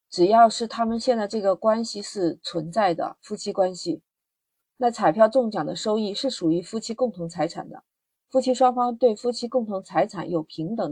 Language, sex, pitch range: Chinese, female, 175-230 Hz